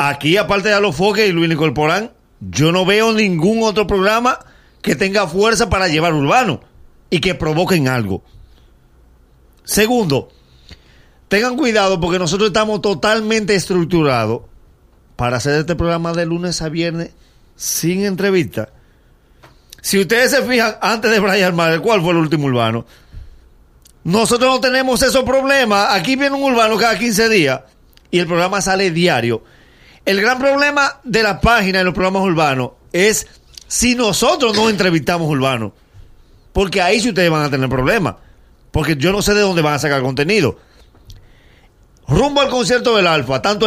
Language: Spanish